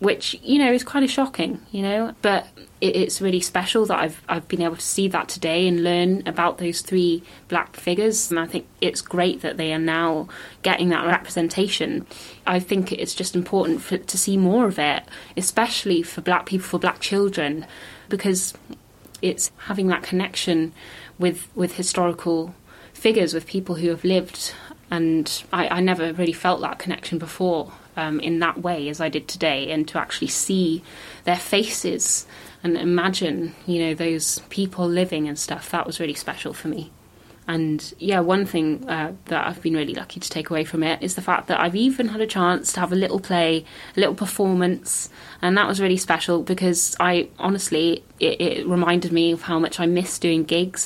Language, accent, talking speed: English, British, 190 wpm